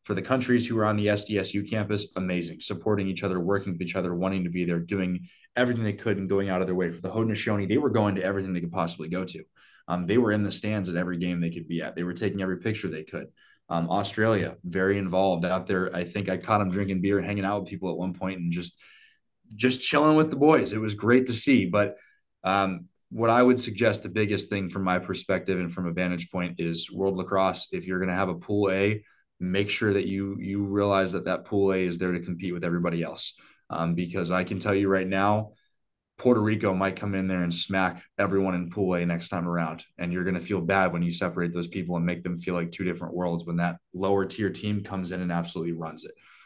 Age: 20-39